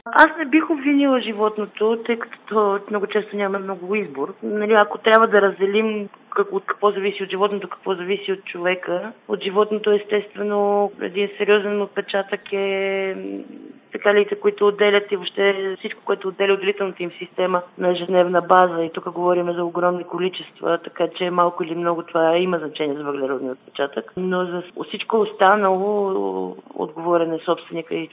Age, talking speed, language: 20-39, 155 wpm, Bulgarian